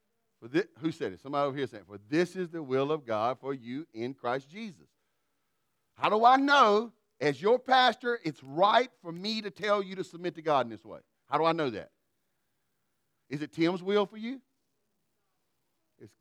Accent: American